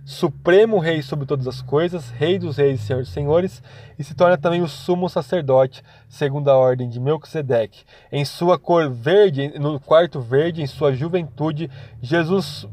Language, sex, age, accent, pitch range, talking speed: Portuguese, male, 20-39, Brazilian, 135-175 Hz, 165 wpm